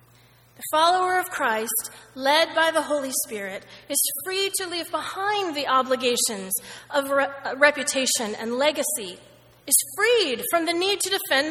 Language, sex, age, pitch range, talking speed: English, female, 30-49, 225-345 Hz, 140 wpm